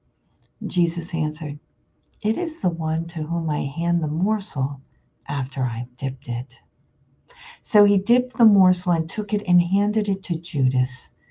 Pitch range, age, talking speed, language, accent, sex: 150-190 Hz, 50-69, 155 wpm, English, American, female